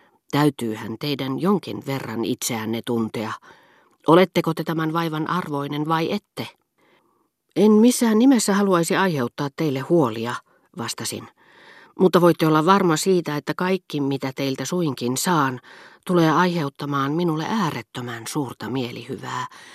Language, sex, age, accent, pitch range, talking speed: Finnish, female, 40-59, native, 125-180 Hz, 115 wpm